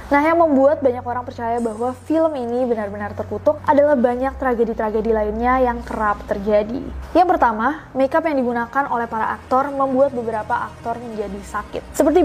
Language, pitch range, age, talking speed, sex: Indonesian, 230-275 Hz, 20-39, 155 wpm, female